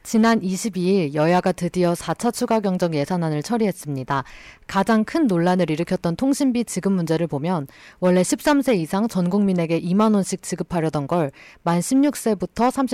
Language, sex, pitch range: Korean, female, 165-220 Hz